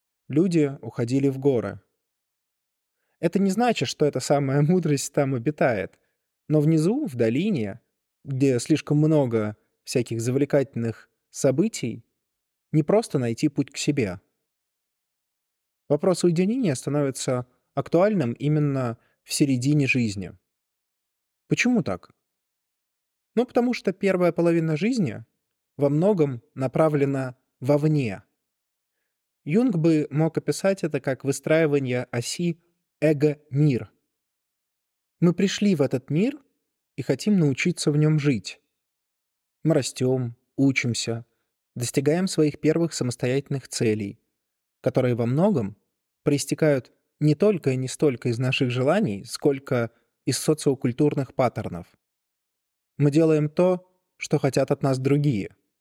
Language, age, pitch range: Russian, 20-39, 125-160 Hz